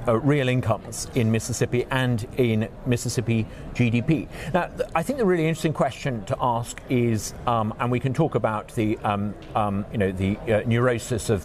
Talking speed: 185 wpm